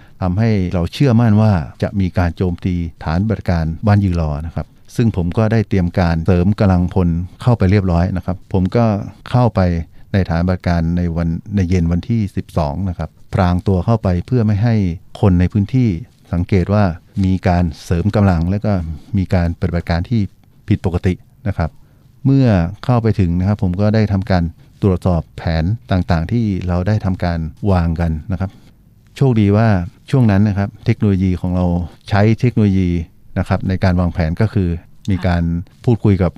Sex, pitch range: male, 90-110 Hz